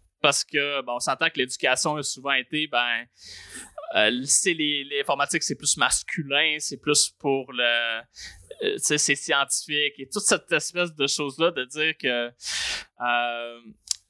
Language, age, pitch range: French, 20-39, 130-165 Hz